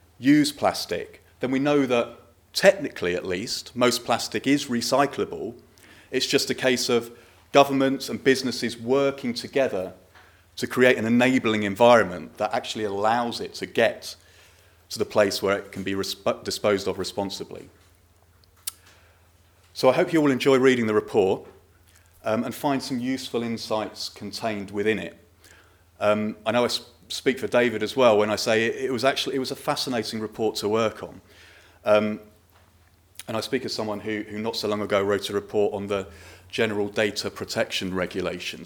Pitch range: 95-130 Hz